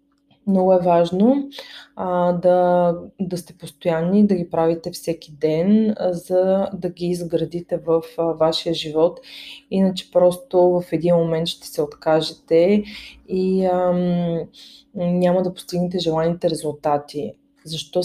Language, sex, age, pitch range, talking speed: Bulgarian, female, 20-39, 165-185 Hz, 130 wpm